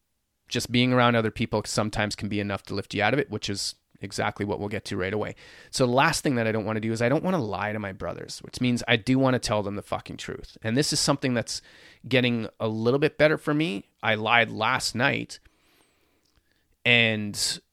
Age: 30-49